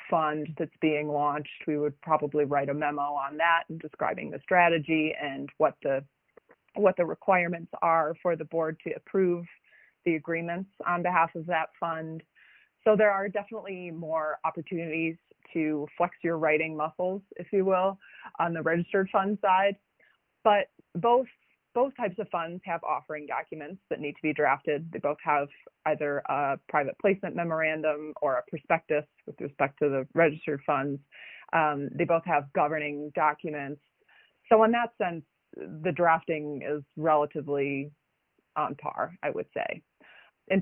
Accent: American